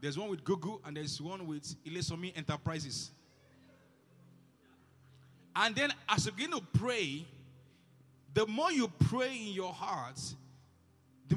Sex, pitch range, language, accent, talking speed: male, 135-190 Hz, English, Nigerian, 130 wpm